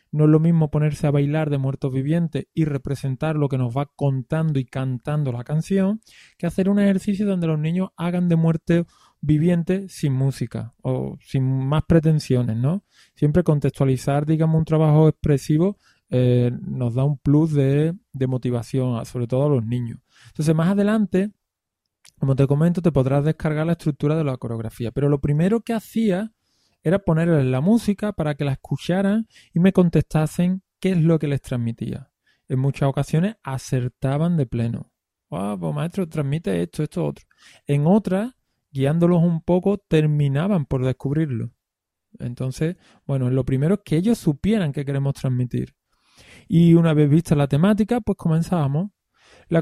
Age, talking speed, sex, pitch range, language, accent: 20-39, 165 wpm, male, 135-175 Hz, Spanish, Spanish